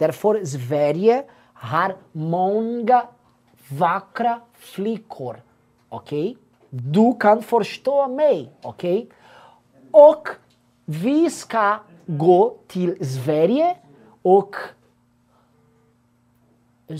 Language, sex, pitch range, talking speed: Portuguese, male, 175-275 Hz, 70 wpm